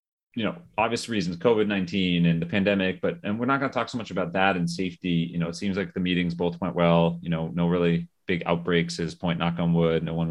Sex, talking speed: male, 255 wpm